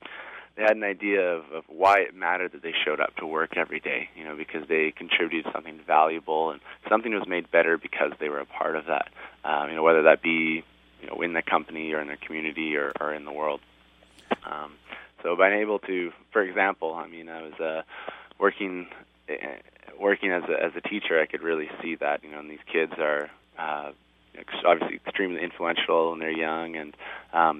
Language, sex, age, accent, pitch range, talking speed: English, male, 20-39, American, 75-90 Hz, 210 wpm